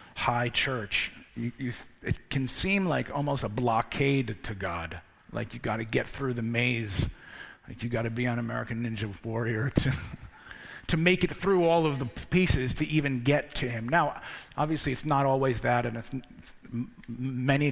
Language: English